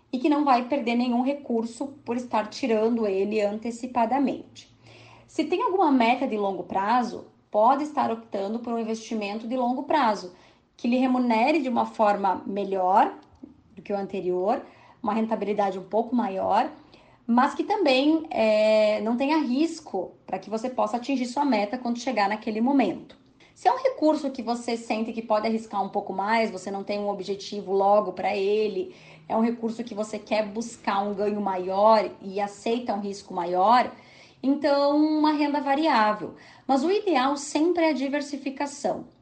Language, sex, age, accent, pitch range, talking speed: Portuguese, female, 20-39, Brazilian, 205-260 Hz, 165 wpm